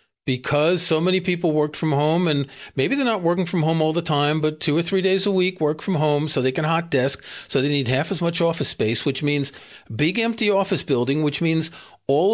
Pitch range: 135-180 Hz